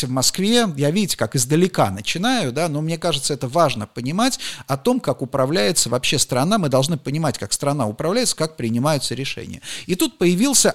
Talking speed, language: 180 wpm, Russian